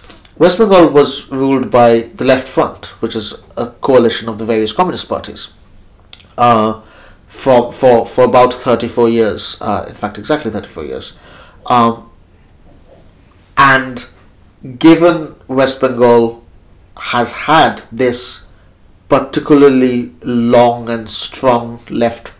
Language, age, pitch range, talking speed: English, 60-79, 110-135 Hz, 115 wpm